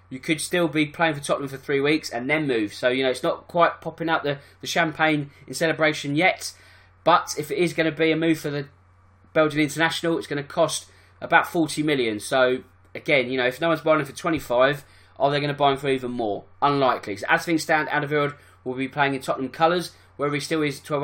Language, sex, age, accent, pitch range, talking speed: English, male, 20-39, British, 130-165 Hz, 235 wpm